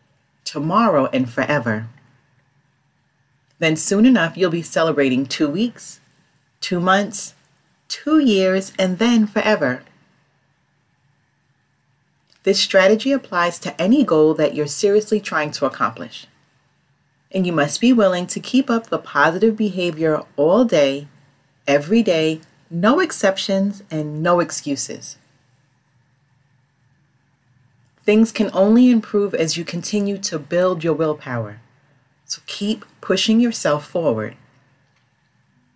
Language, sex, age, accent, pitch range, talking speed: English, female, 40-59, American, 140-195 Hz, 110 wpm